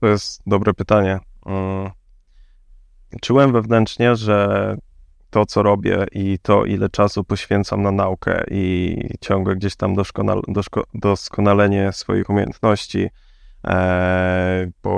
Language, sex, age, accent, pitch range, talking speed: Polish, male, 20-39, native, 100-110 Hz, 105 wpm